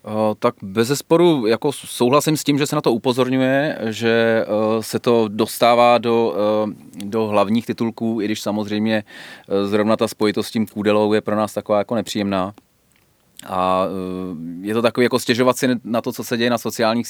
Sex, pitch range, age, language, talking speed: male, 105-120 Hz, 30-49, Czech, 170 wpm